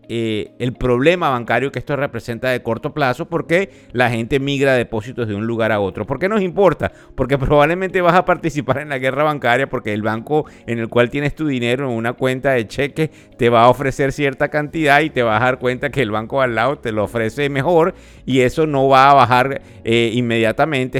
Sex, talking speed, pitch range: male, 215 wpm, 110-140 Hz